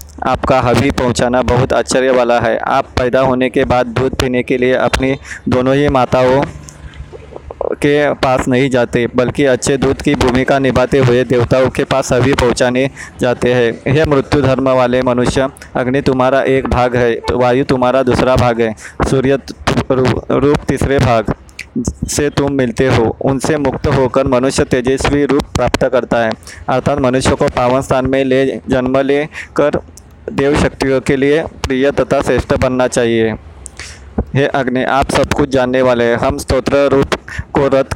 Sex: male